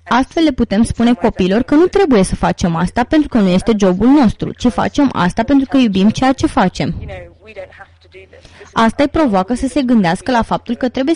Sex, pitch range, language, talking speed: female, 200-265 Hz, English, 195 wpm